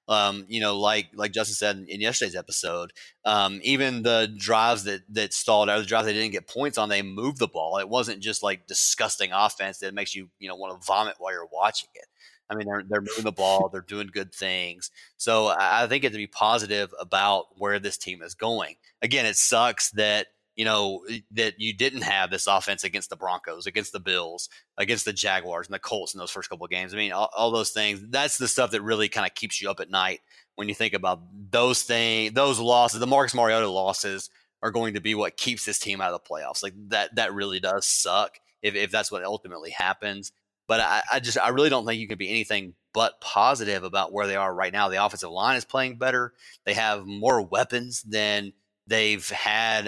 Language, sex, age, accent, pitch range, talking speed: English, male, 30-49, American, 100-115 Hz, 230 wpm